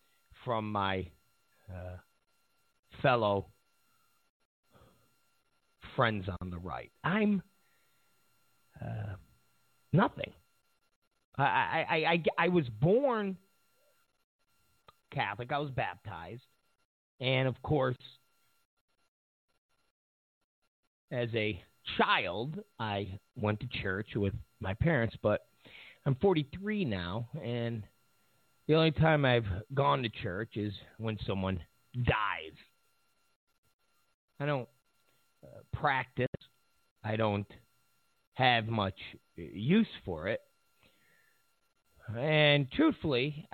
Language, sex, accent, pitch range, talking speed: English, male, American, 105-150 Hz, 85 wpm